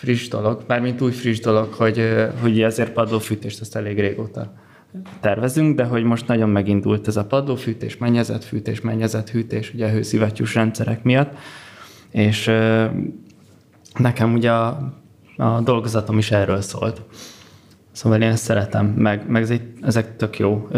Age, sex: 20-39, male